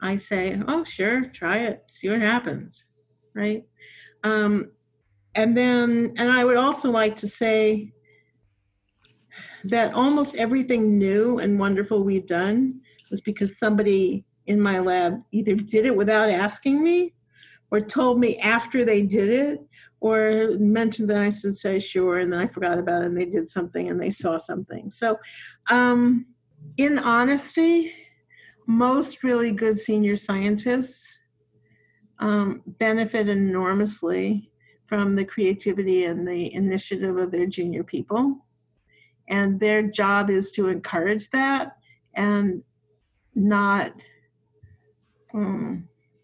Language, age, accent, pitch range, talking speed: English, 50-69, American, 185-230 Hz, 130 wpm